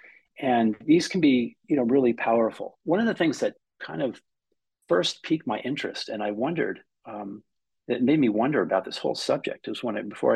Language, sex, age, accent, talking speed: English, male, 50-69, American, 205 wpm